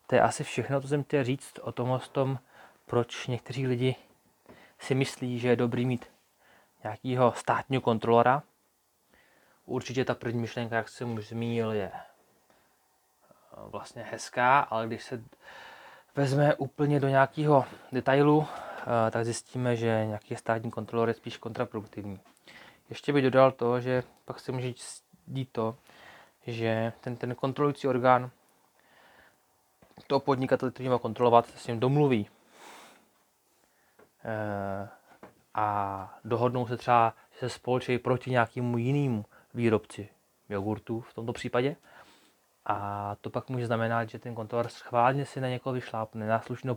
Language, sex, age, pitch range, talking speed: Czech, male, 20-39, 115-130 Hz, 135 wpm